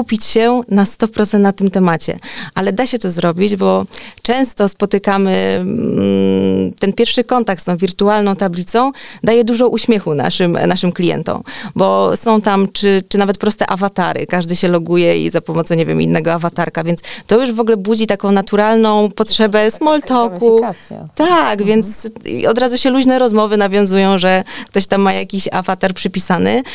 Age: 30-49